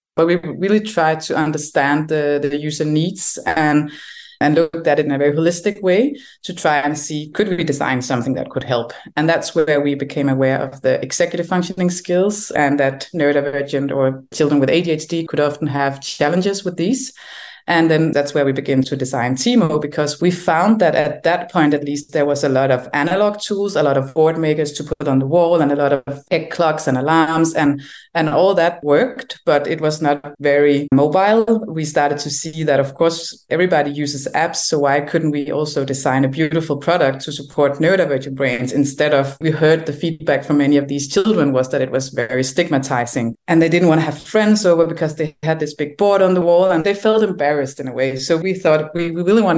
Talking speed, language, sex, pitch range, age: 220 wpm, English, female, 140-170 Hz, 20-39